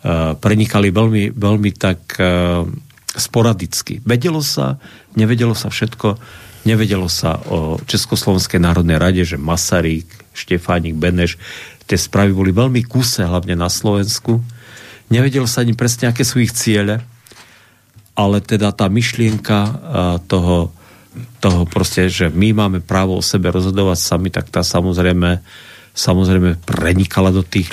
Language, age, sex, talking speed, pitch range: Slovak, 50-69, male, 130 wpm, 90-110 Hz